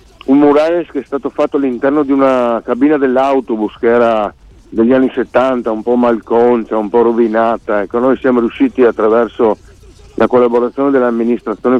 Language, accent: Italian, native